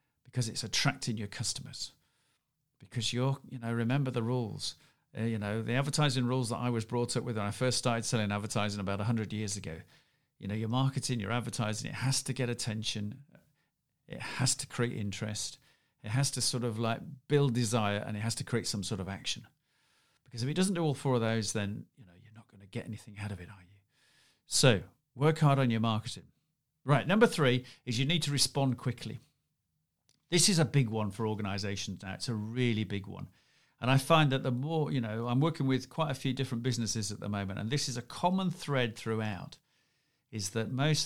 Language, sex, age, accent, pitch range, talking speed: English, male, 40-59, British, 110-135 Hz, 215 wpm